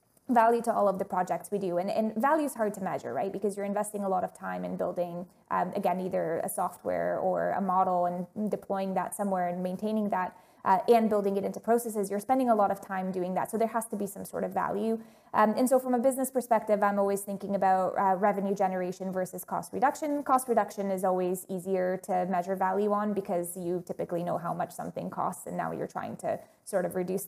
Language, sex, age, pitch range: English, female, 20-39, 190-225 Hz